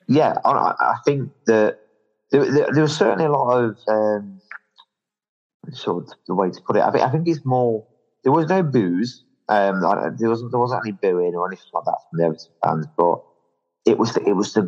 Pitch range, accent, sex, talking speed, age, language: 85-120 Hz, British, male, 215 wpm, 30-49, English